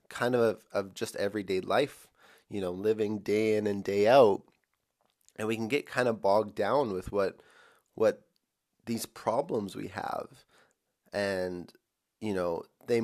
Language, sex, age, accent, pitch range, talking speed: English, male, 30-49, American, 100-125 Hz, 150 wpm